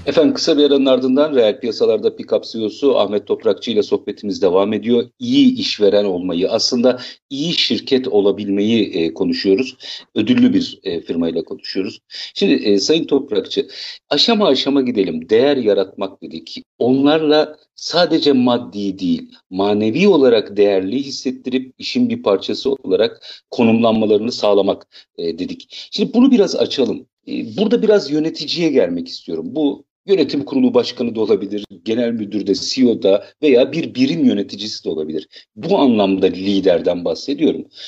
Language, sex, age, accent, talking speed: Turkish, male, 50-69, native, 135 wpm